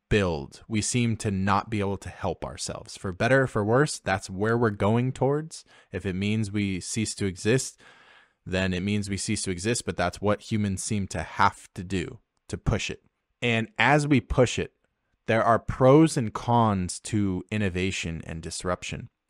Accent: American